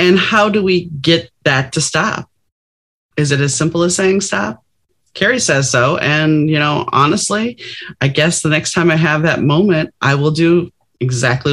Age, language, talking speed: 30-49, English, 180 wpm